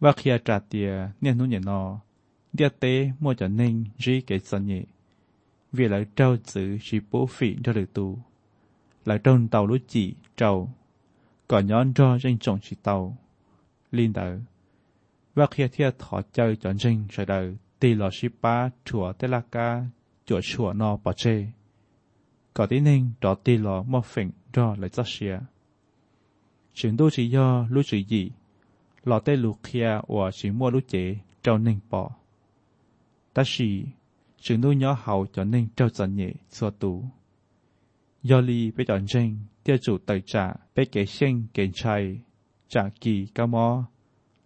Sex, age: male, 20-39